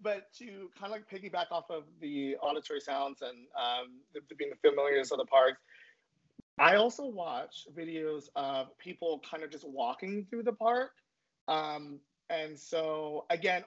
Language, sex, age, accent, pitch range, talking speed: English, male, 30-49, American, 145-210 Hz, 160 wpm